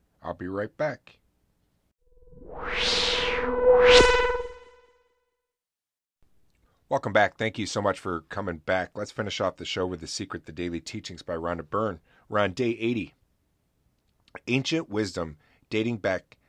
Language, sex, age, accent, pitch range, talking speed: English, male, 30-49, American, 85-110 Hz, 125 wpm